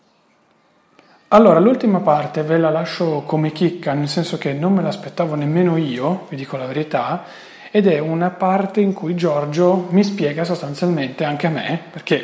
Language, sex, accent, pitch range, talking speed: Italian, male, native, 145-180 Hz, 165 wpm